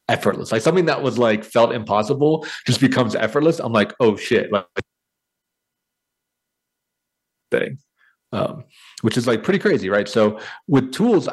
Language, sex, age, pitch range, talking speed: English, male, 30-49, 95-125 Hz, 130 wpm